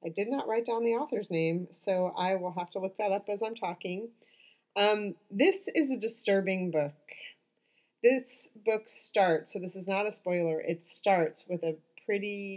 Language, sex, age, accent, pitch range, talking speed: English, female, 40-59, American, 160-195 Hz, 185 wpm